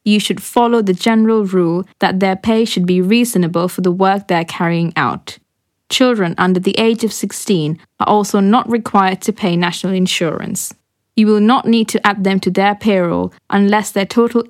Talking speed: 185 wpm